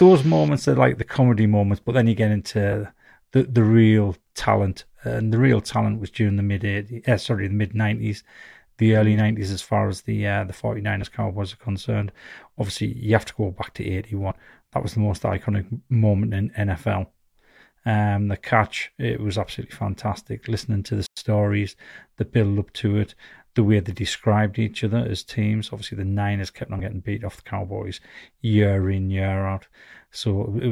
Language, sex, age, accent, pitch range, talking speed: English, male, 30-49, British, 100-110 Hz, 195 wpm